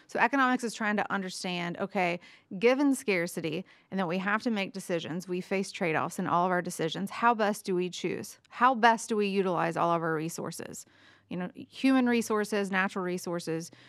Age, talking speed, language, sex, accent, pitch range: 30-49, 190 wpm, English, female, American, 180-220 Hz